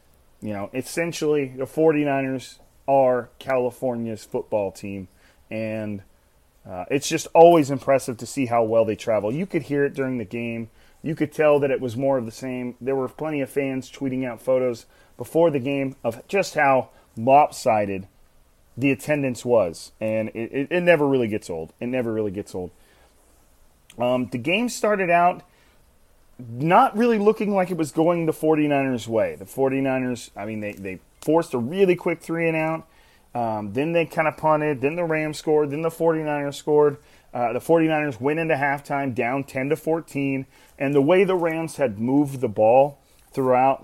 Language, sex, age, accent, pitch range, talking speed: English, male, 30-49, American, 115-150 Hz, 180 wpm